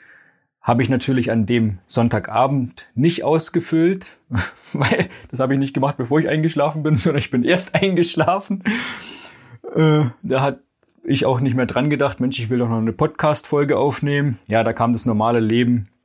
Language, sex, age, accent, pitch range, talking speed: German, male, 40-59, German, 115-150 Hz, 170 wpm